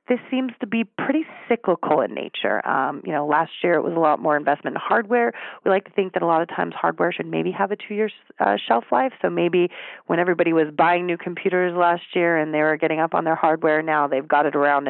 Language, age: English, 30-49